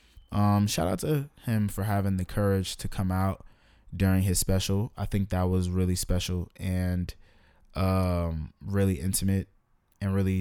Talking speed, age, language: 155 wpm, 20-39, English